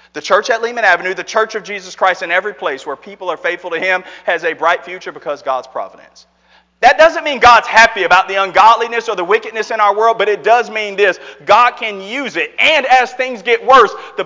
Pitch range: 195-250 Hz